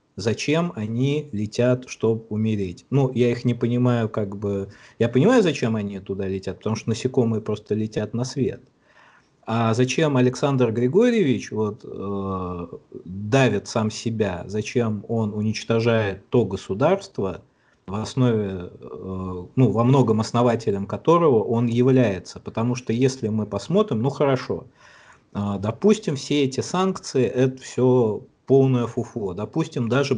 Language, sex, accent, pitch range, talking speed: Russian, male, native, 105-130 Hz, 125 wpm